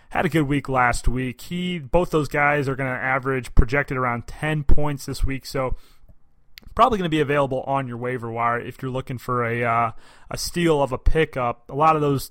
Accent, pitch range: American, 120-145 Hz